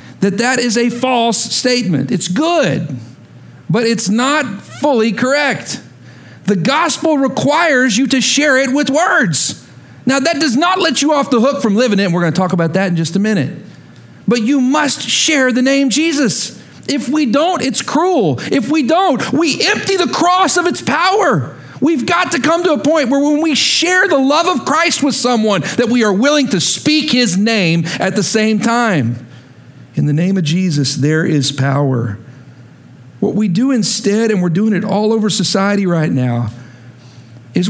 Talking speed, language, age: 185 wpm, English, 50-69